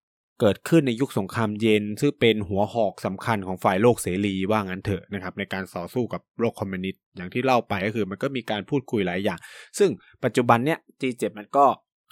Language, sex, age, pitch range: Thai, male, 20-39, 100-125 Hz